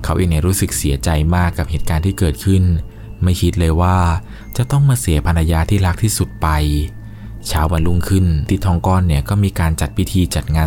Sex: male